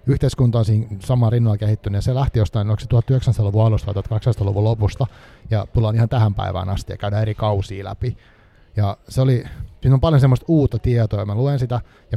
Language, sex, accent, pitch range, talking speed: Finnish, male, native, 100-125 Hz, 205 wpm